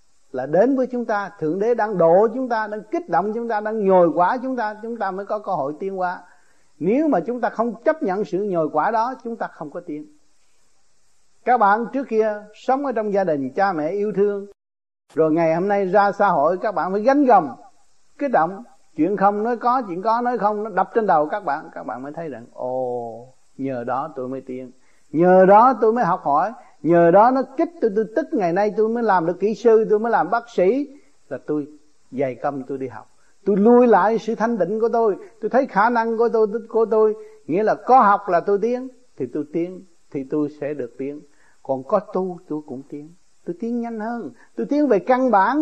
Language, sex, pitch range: Vietnamese, male, 170-235 Hz